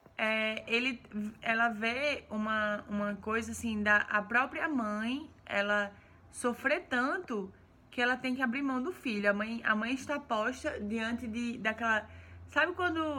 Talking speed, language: 155 wpm, Portuguese